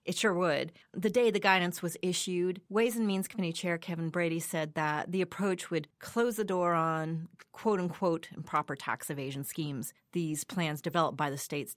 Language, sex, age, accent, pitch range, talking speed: English, female, 30-49, American, 155-195 Hz, 185 wpm